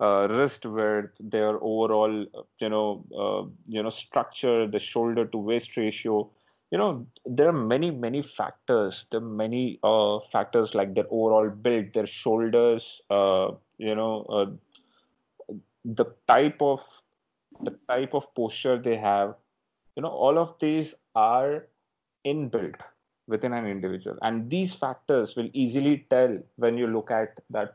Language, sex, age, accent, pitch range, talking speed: Hindi, male, 30-49, native, 110-130 Hz, 145 wpm